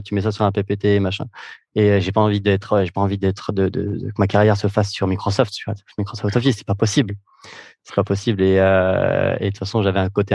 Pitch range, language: 100-115 Hz, French